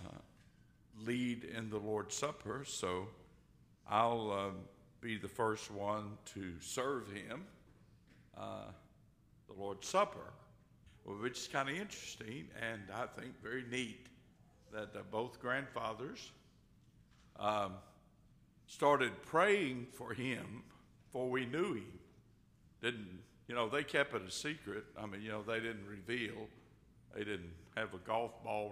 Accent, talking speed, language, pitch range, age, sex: American, 130 wpm, English, 100-125 Hz, 60-79, male